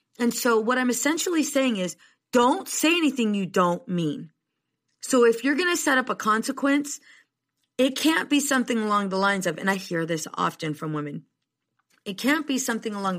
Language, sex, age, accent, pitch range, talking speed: English, female, 30-49, American, 175-255 Hz, 190 wpm